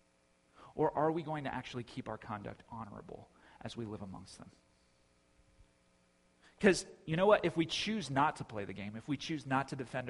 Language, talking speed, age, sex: English, 195 wpm, 40-59, male